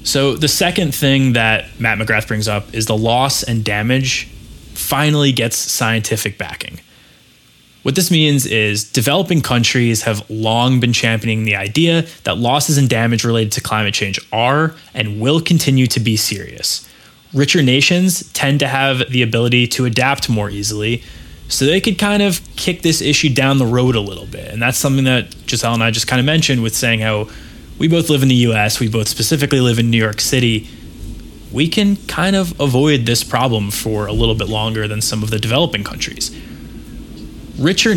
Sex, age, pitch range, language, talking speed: male, 20-39, 110-140 Hz, English, 185 wpm